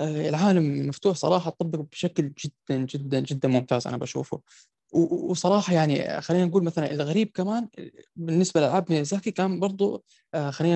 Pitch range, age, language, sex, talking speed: 145-185 Hz, 20-39, Arabic, male, 135 wpm